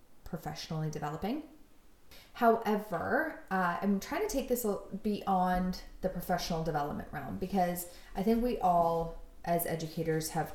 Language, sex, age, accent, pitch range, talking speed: English, female, 20-39, American, 165-205 Hz, 125 wpm